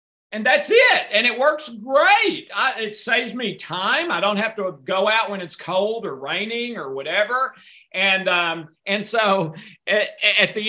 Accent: American